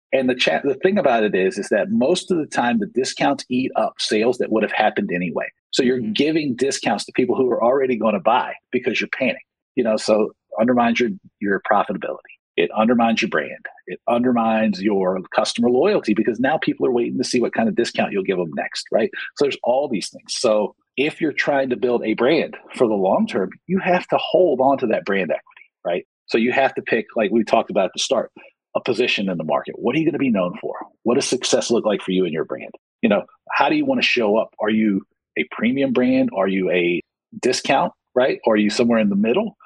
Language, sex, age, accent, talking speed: English, male, 50-69, American, 240 wpm